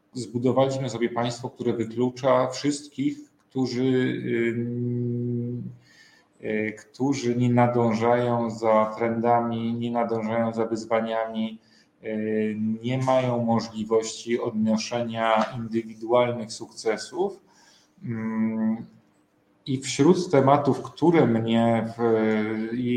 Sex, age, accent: male, 40-59, native